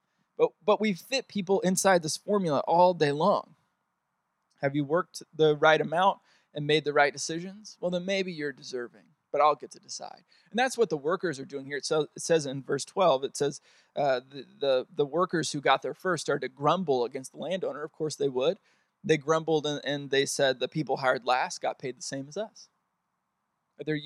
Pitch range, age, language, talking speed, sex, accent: 155-195 Hz, 20-39, English, 205 wpm, male, American